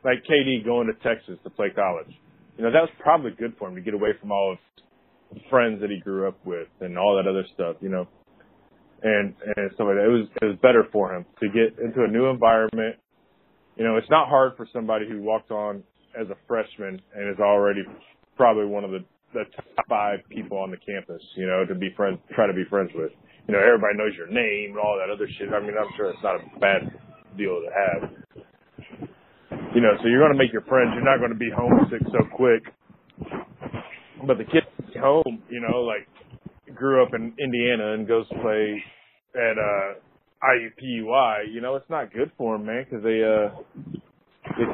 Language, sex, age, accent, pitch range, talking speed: English, male, 20-39, American, 105-130 Hz, 215 wpm